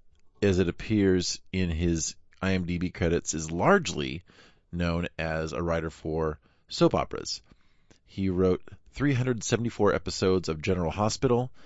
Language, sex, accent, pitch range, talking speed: English, male, American, 80-105 Hz, 120 wpm